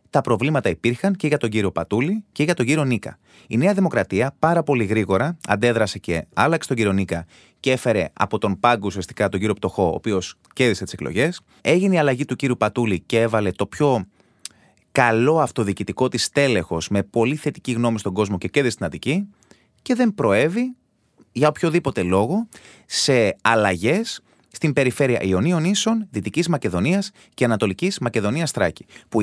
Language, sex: Greek, male